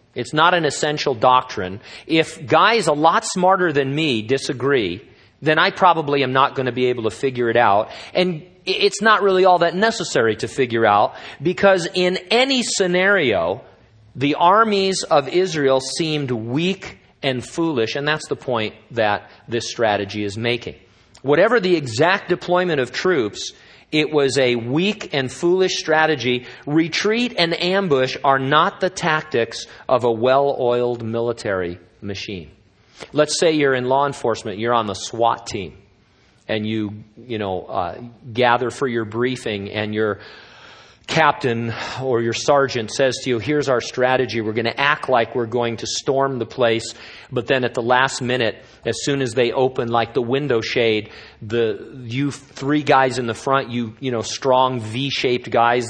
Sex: male